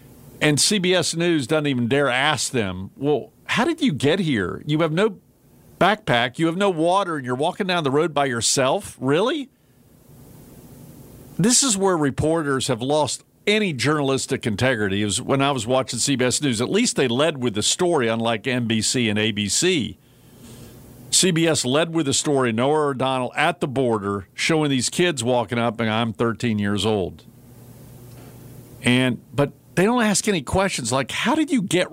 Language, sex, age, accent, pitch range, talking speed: English, male, 50-69, American, 125-165 Hz, 170 wpm